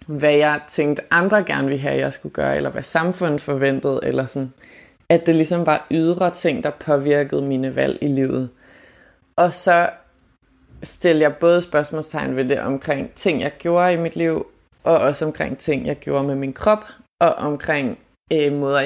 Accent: native